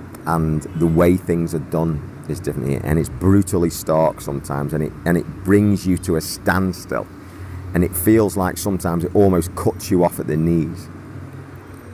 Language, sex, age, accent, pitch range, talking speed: English, male, 40-59, British, 75-95 Hz, 180 wpm